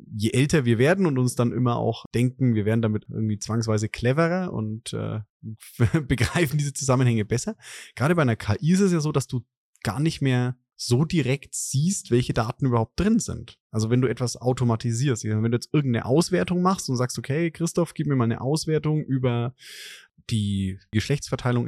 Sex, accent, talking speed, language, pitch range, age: male, German, 185 wpm, German, 110-140 Hz, 20-39